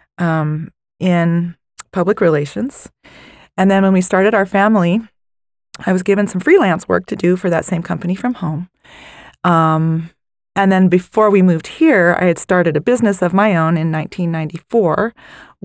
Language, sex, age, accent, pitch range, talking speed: English, female, 30-49, American, 175-215 Hz, 160 wpm